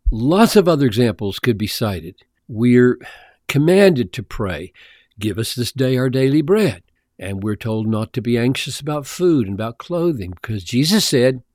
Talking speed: 170 wpm